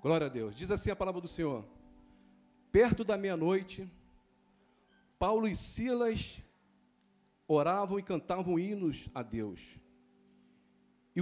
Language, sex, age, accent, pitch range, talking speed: Portuguese, male, 50-69, Brazilian, 140-200 Hz, 120 wpm